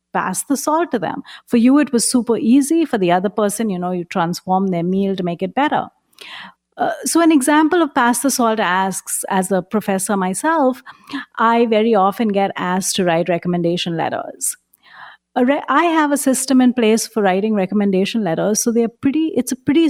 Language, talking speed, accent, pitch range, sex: English, 200 wpm, Indian, 190-255 Hz, female